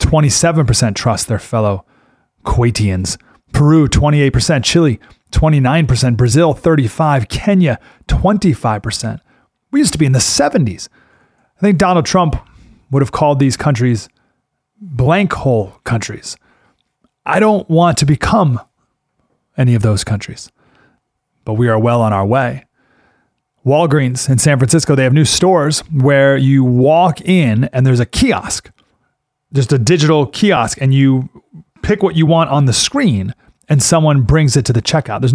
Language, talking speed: English, 145 wpm